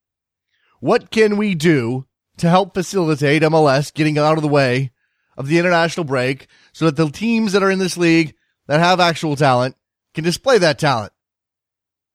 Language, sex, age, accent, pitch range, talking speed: English, male, 30-49, American, 110-180 Hz, 170 wpm